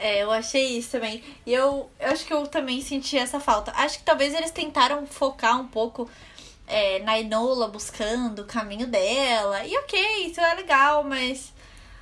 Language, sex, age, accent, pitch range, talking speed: Portuguese, female, 10-29, Brazilian, 210-290 Hz, 175 wpm